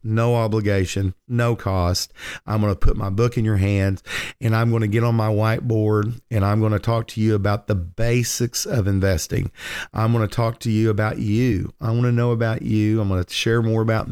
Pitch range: 100-120 Hz